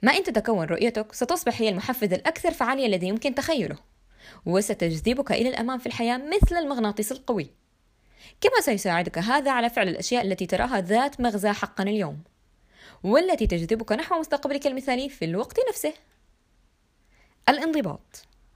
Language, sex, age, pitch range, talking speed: Arabic, female, 20-39, 195-300 Hz, 135 wpm